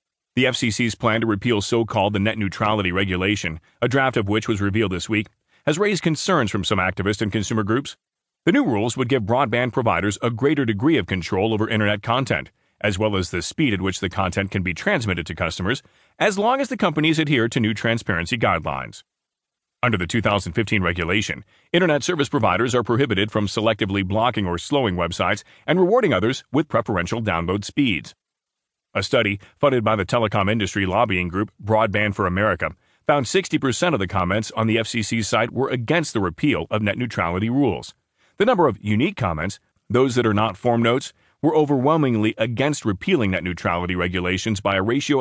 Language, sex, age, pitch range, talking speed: English, male, 30-49, 100-125 Hz, 185 wpm